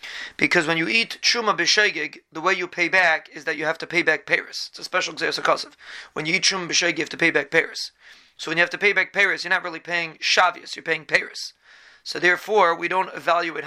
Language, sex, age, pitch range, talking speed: English, male, 30-49, 155-180 Hz, 245 wpm